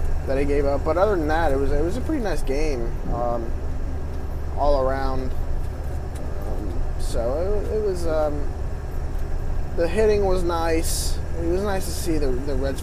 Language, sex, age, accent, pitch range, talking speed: English, male, 20-39, American, 70-85 Hz, 175 wpm